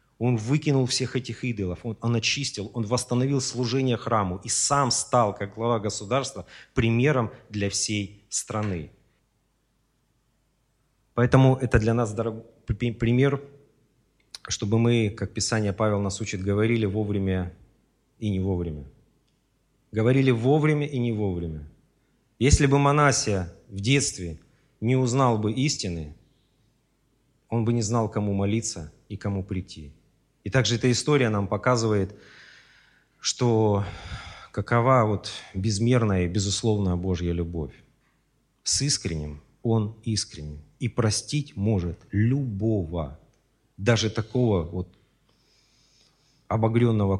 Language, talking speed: Russian, 115 wpm